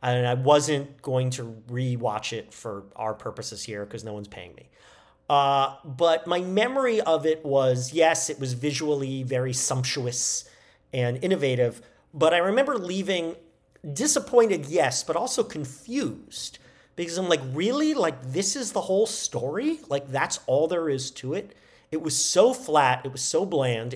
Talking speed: 165 wpm